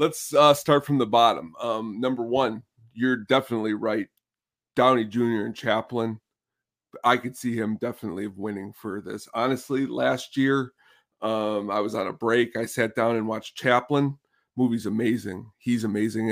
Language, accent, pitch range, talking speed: English, American, 110-135 Hz, 160 wpm